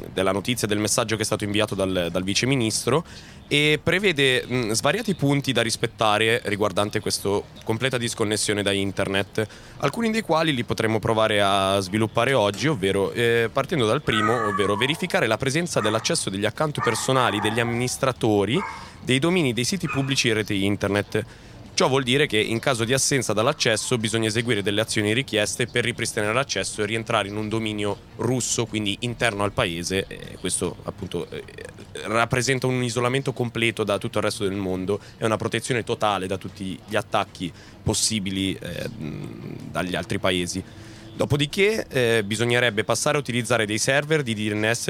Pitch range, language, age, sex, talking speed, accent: 100-125 Hz, Italian, 20-39, male, 155 wpm, native